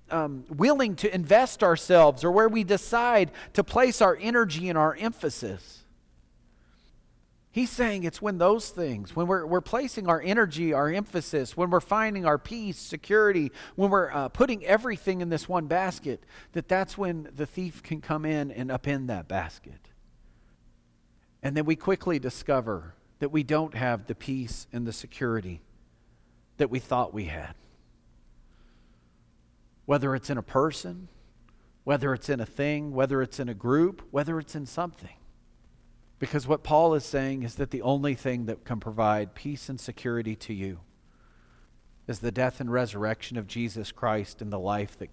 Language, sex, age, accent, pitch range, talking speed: English, male, 40-59, American, 105-175 Hz, 165 wpm